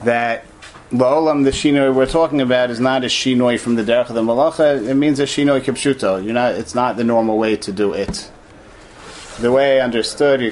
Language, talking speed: English, 195 wpm